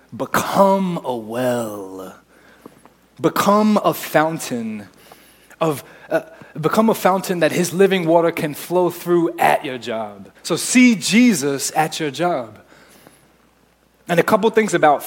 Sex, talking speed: male, 125 wpm